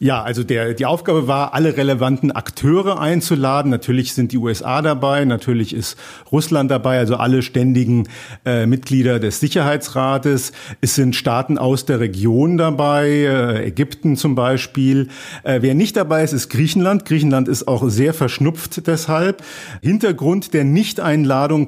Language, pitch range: German, 130-155 Hz